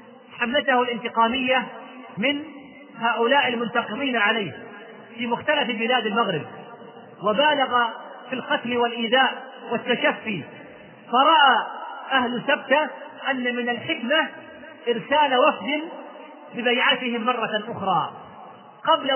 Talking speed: 85 wpm